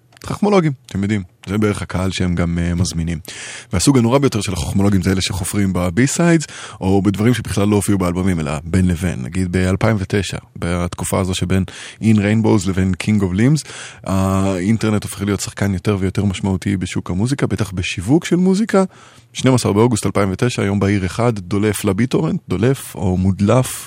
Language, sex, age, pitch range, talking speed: Hebrew, male, 20-39, 90-120 Hz, 160 wpm